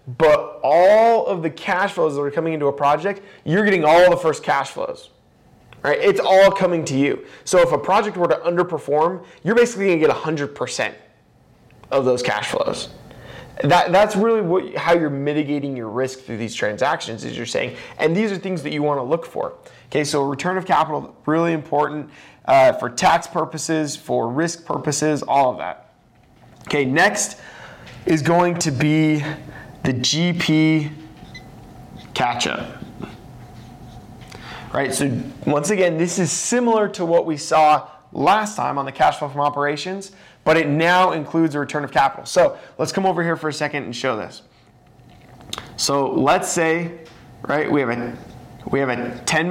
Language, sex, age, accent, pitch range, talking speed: English, male, 20-39, American, 145-180 Hz, 170 wpm